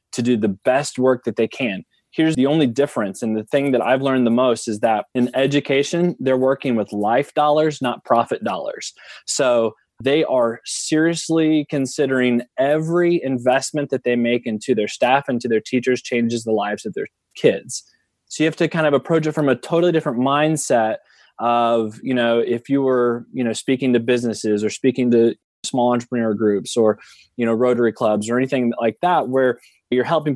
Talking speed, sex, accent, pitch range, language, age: 190 wpm, male, American, 115-140 Hz, English, 20-39